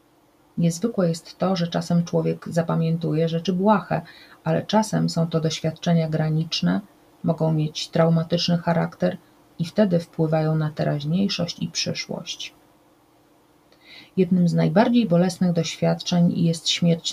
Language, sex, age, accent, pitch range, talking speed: Polish, female, 30-49, native, 160-180 Hz, 115 wpm